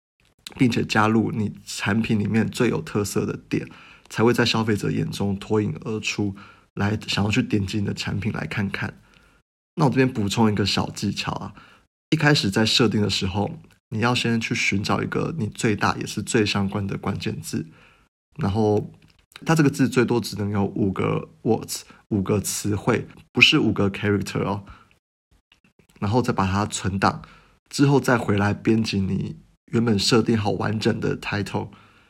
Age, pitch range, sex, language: 20-39, 100-115 Hz, male, Chinese